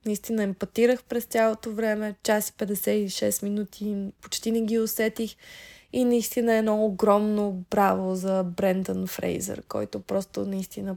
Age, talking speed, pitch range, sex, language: 20-39, 130 wpm, 195-230 Hz, female, Bulgarian